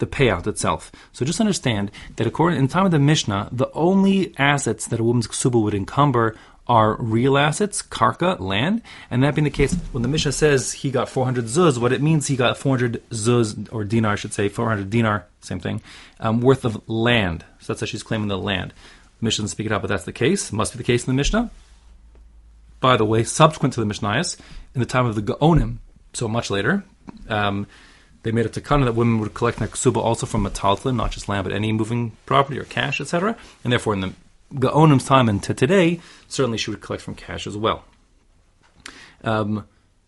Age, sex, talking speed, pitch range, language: 30-49, male, 215 wpm, 105-135 Hz, English